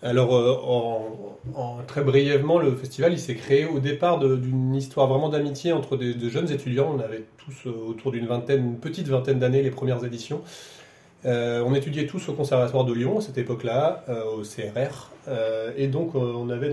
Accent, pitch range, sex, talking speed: French, 120-140 Hz, male, 195 wpm